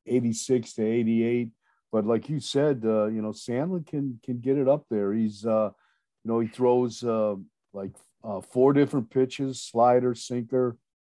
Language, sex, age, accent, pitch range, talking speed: English, male, 50-69, American, 110-130 Hz, 170 wpm